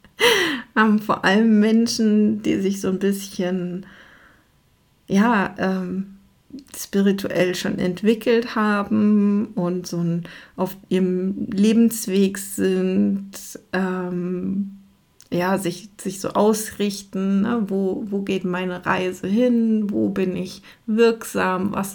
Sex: female